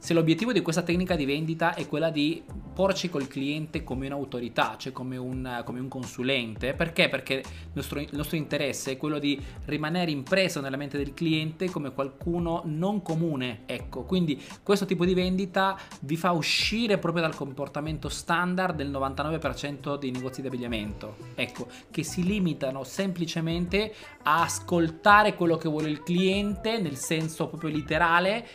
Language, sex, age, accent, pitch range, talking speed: Italian, male, 20-39, native, 135-175 Hz, 160 wpm